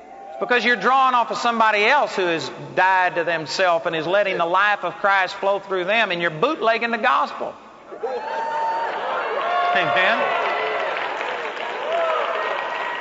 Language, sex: English, male